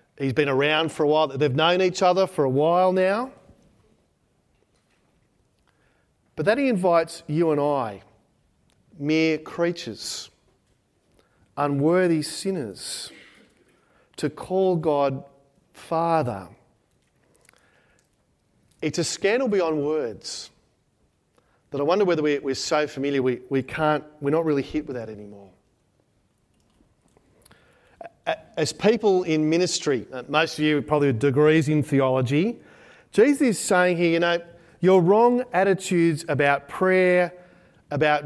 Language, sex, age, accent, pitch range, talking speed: English, male, 40-59, Australian, 145-180 Hz, 115 wpm